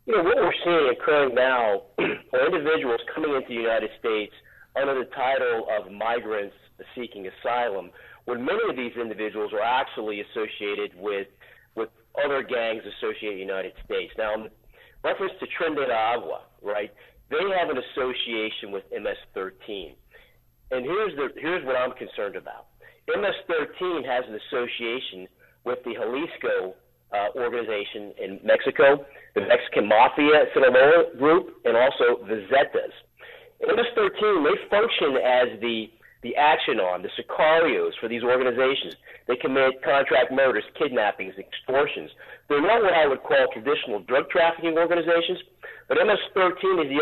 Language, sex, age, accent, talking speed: English, male, 40-59, American, 145 wpm